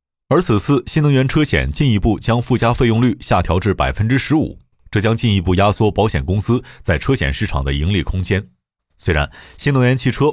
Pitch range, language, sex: 85-120 Hz, Chinese, male